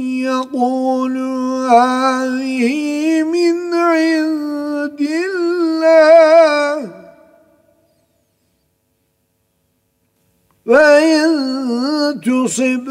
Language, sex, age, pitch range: Turkish, male, 50-69, 205-310 Hz